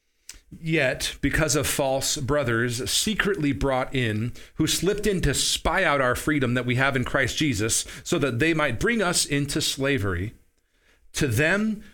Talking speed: 160 wpm